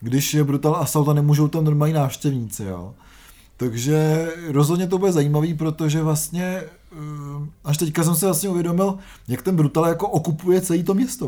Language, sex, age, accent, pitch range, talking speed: Czech, male, 20-39, native, 130-160 Hz, 165 wpm